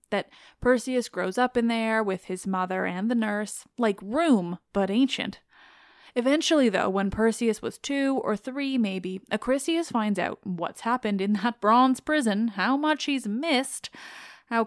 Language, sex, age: English, female, 20-39